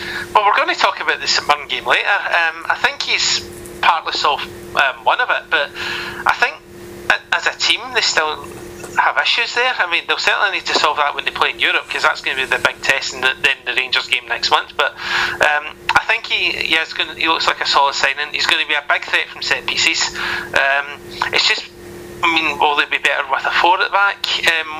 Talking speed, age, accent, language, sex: 240 wpm, 30-49, British, English, male